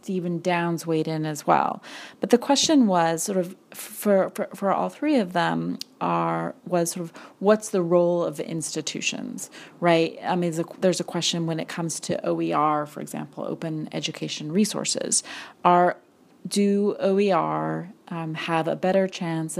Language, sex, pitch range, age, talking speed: English, female, 165-200 Hz, 30-49, 170 wpm